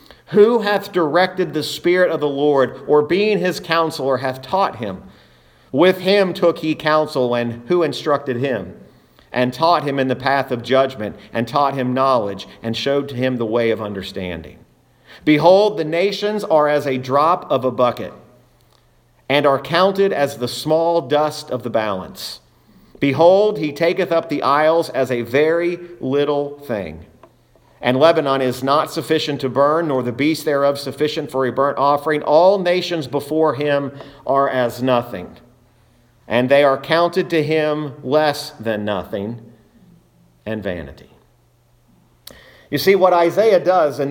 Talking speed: 155 wpm